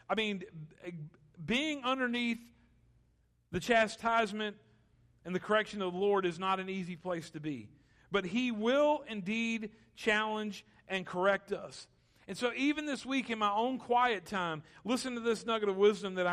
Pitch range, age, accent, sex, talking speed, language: 180-245 Hz, 50-69, American, male, 160 wpm, English